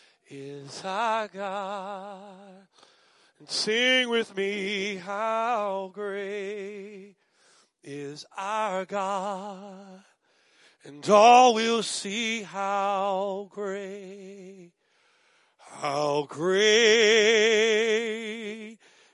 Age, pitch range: 30-49, 195-250 Hz